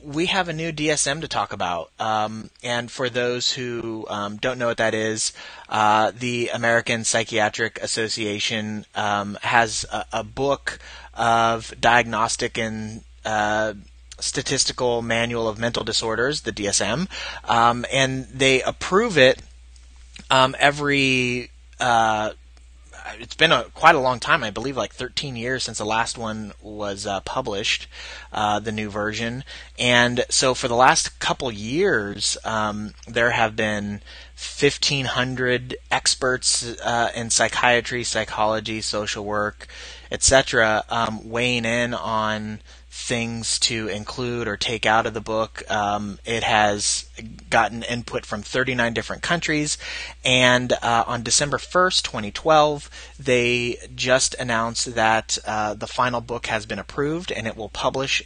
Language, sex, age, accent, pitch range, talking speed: English, male, 30-49, American, 105-125 Hz, 135 wpm